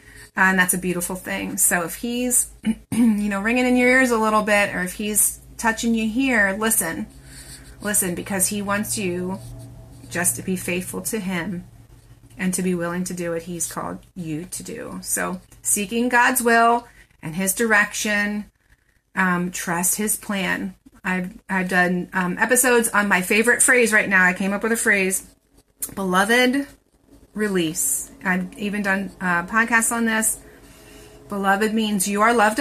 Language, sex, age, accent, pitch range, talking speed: English, female, 30-49, American, 175-220 Hz, 165 wpm